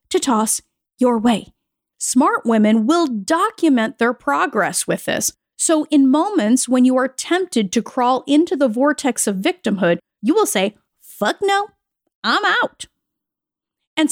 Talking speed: 145 wpm